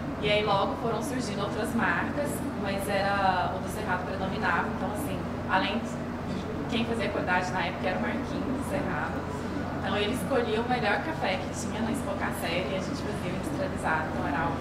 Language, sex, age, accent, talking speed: Portuguese, female, 20-39, Brazilian, 190 wpm